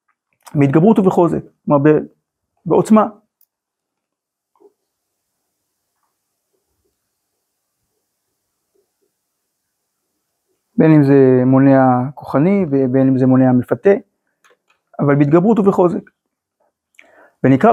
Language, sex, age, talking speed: Hebrew, male, 60-79, 60 wpm